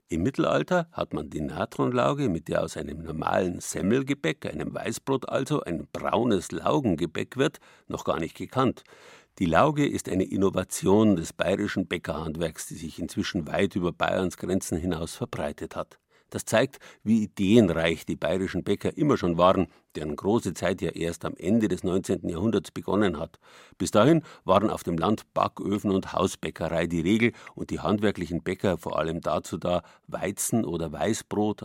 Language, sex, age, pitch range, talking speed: German, male, 50-69, 85-110 Hz, 160 wpm